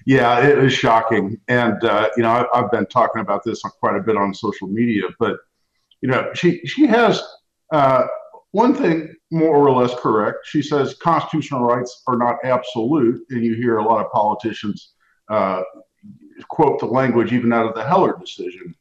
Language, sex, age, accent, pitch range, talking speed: English, male, 50-69, American, 115-155 Hz, 180 wpm